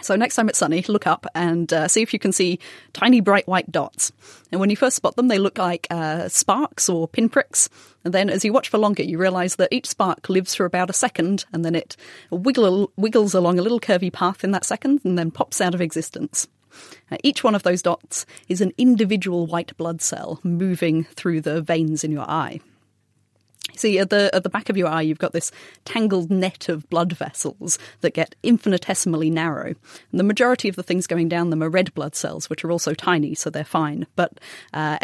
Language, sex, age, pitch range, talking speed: English, female, 30-49, 165-200 Hz, 220 wpm